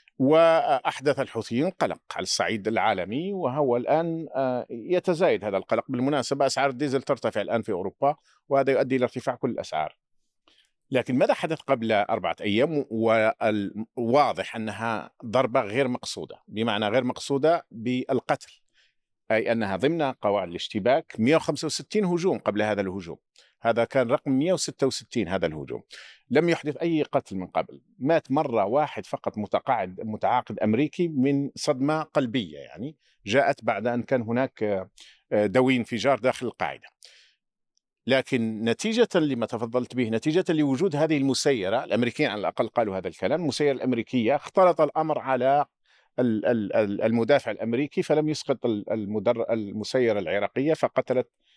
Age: 50-69